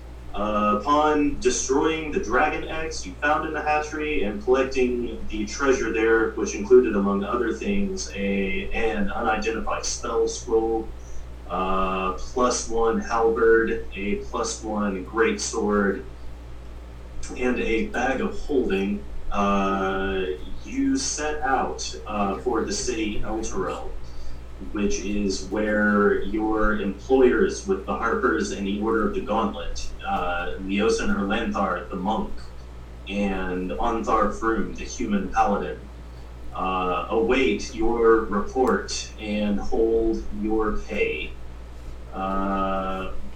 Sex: male